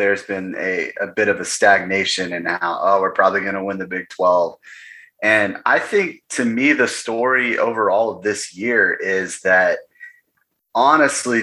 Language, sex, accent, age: English, male, American, 30-49